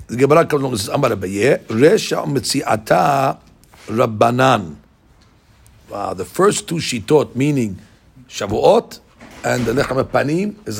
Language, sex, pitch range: English, male, 125-175 Hz